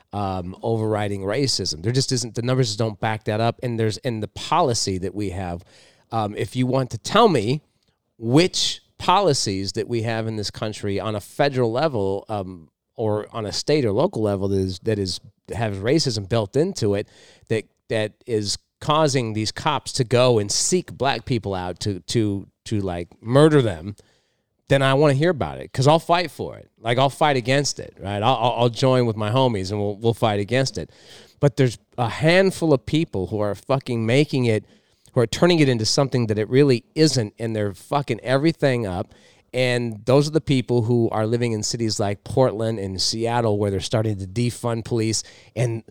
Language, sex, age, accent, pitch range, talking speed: English, male, 30-49, American, 105-130 Hz, 200 wpm